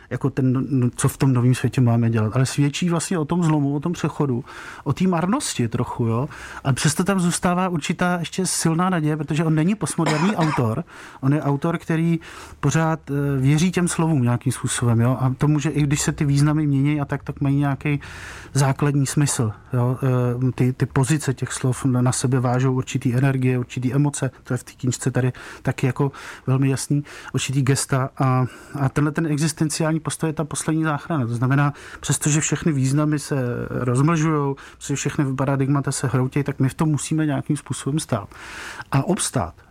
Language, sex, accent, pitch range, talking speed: Czech, male, native, 130-155 Hz, 185 wpm